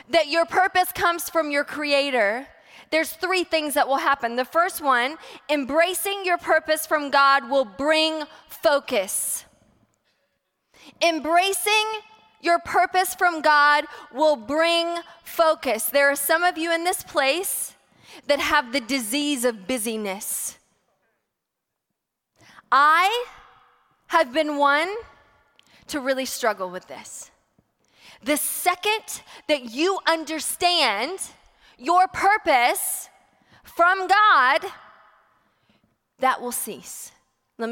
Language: English